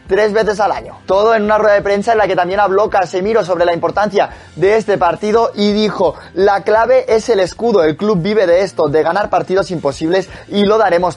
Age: 20-39